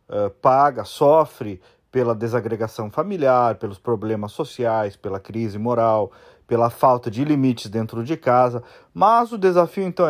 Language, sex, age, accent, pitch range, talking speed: Portuguese, male, 40-59, Brazilian, 125-175 Hz, 130 wpm